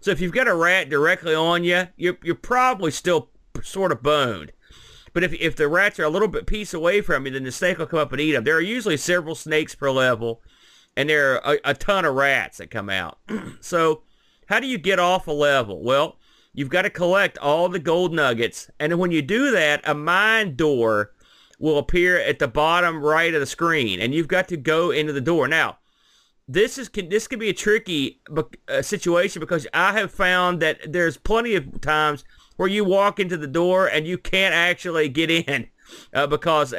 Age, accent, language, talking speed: 40-59, American, English, 210 wpm